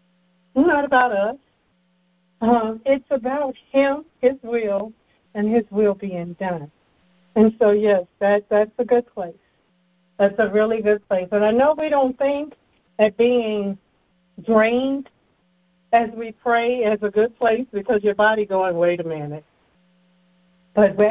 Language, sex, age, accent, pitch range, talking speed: English, female, 60-79, American, 180-235 Hz, 145 wpm